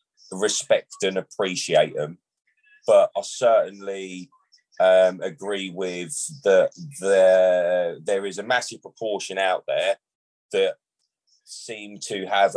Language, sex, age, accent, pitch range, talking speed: English, male, 30-49, British, 100-160 Hz, 110 wpm